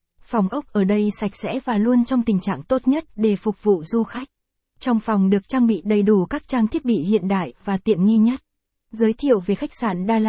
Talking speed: 240 wpm